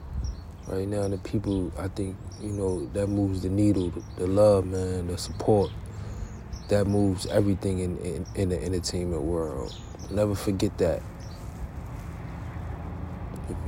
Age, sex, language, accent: 40-59, male, English, American